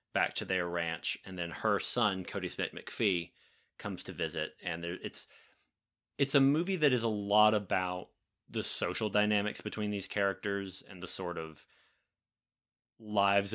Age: 30-49